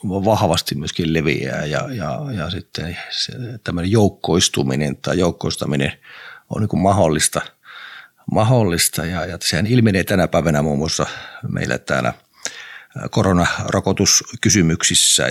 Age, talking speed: 50-69, 100 wpm